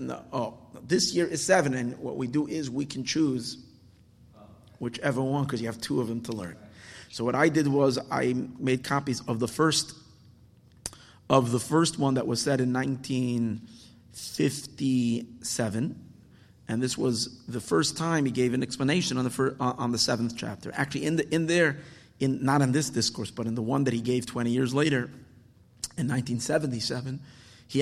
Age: 30-49